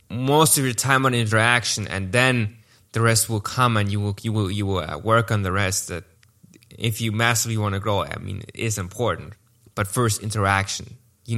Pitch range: 105-125 Hz